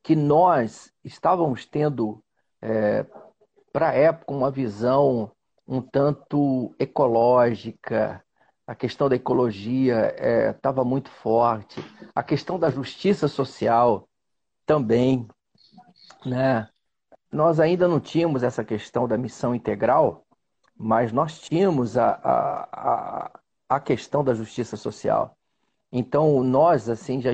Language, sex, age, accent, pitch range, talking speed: Portuguese, male, 40-59, Brazilian, 115-145 Hz, 105 wpm